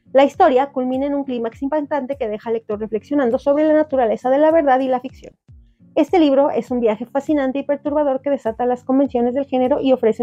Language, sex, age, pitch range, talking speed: Spanish, female, 30-49, 235-290 Hz, 215 wpm